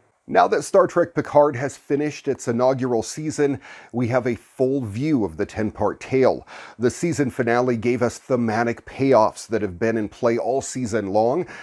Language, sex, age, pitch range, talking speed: English, male, 40-59, 115-145 Hz, 175 wpm